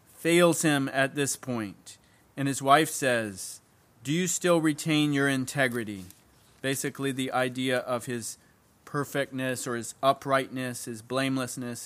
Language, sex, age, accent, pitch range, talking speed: English, male, 20-39, American, 120-145 Hz, 130 wpm